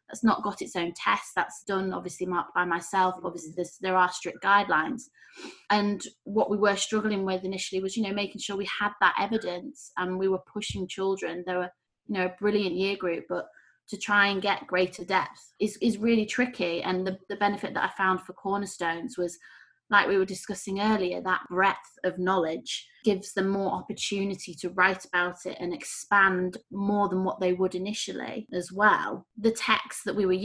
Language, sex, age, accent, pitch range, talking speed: English, female, 20-39, British, 180-205 Hz, 195 wpm